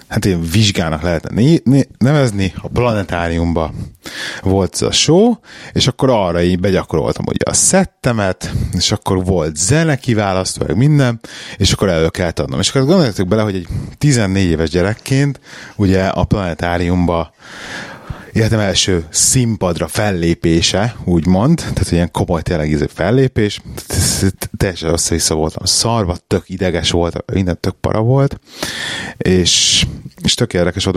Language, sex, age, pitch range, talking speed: Hungarian, male, 30-49, 85-115 Hz, 135 wpm